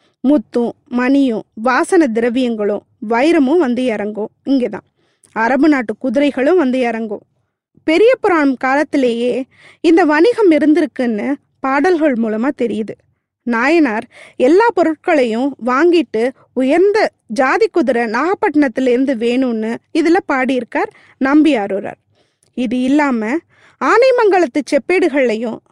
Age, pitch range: 20-39, 245-320 Hz